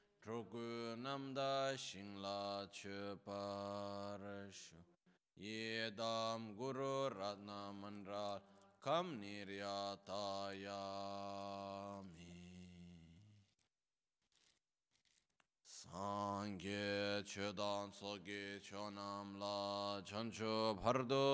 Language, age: Italian, 20-39